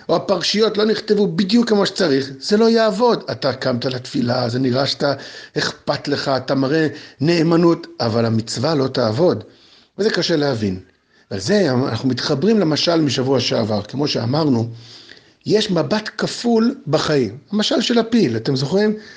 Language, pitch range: Hebrew, 135-205 Hz